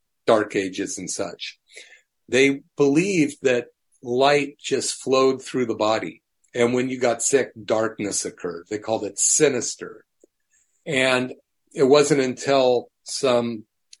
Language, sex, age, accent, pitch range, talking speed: English, male, 40-59, American, 120-145 Hz, 125 wpm